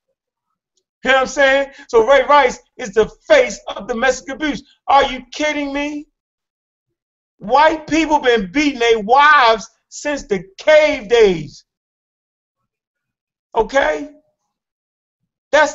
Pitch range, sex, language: 215-290 Hz, male, English